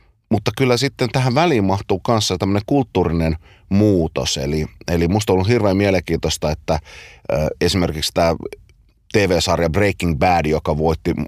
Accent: native